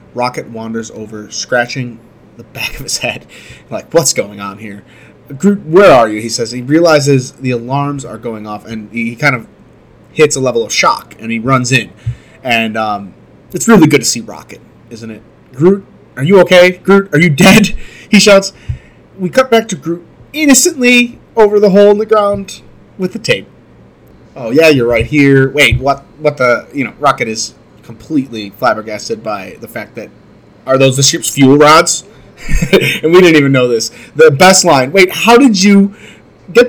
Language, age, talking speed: English, 30-49, 185 wpm